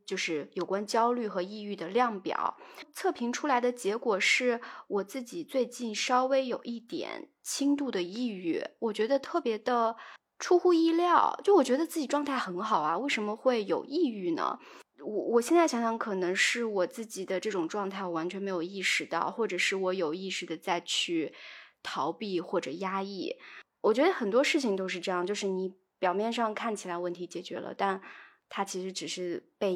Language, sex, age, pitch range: Chinese, female, 20-39, 185-255 Hz